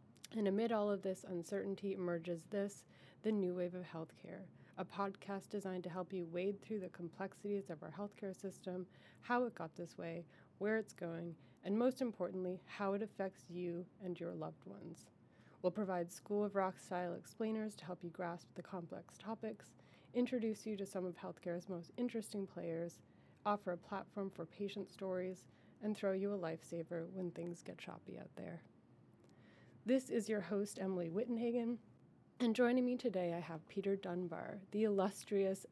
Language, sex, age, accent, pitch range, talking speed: English, female, 30-49, American, 175-210 Hz, 170 wpm